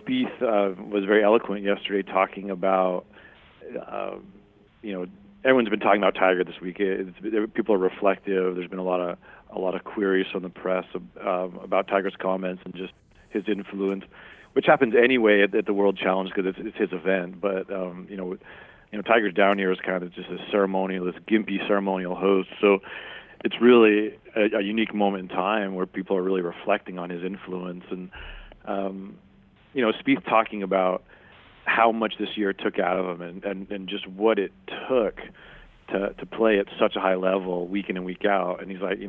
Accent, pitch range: American, 95-105 Hz